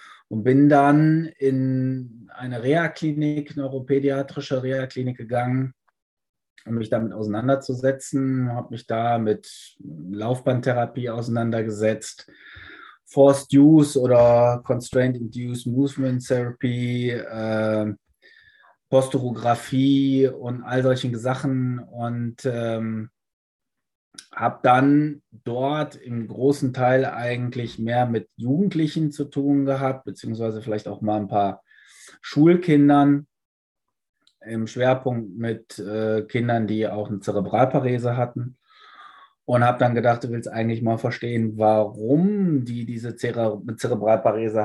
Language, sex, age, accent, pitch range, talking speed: German, male, 20-39, German, 115-135 Hz, 105 wpm